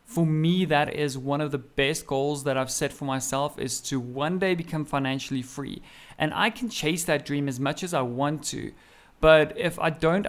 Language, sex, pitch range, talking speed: English, male, 140-165 Hz, 215 wpm